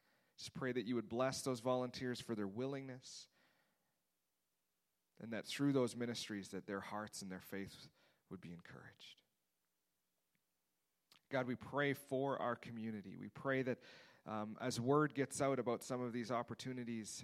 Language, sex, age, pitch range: English, male, 30-49, 100-125 Hz